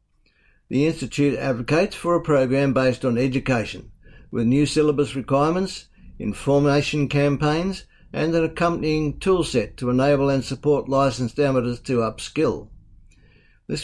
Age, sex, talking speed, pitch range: 60-79, male, 120 wpm, 120-150 Hz